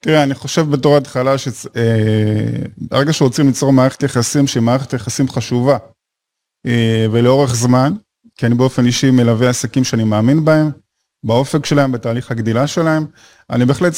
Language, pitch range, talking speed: Hebrew, 125-155 Hz, 150 wpm